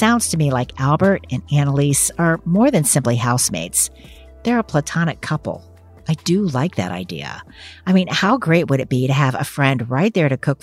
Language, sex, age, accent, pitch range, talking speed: English, female, 50-69, American, 125-170 Hz, 205 wpm